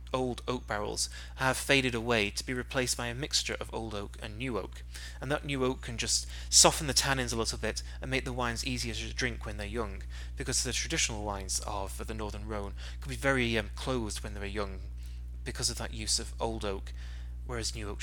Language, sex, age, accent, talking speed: English, male, 30-49, British, 225 wpm